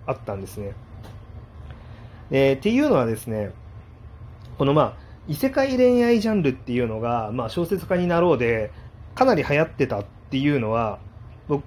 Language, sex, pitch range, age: Japanese, male, 110-160 Hz, 30-49